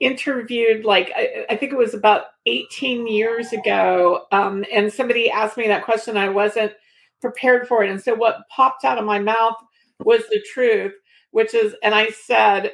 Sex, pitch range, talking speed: female, 200-240 Hz, 185 wpm